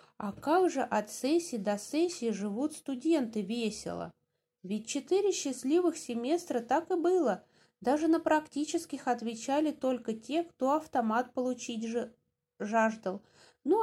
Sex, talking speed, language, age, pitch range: female, 120 wpm, English, 20-39, 220-310 Hz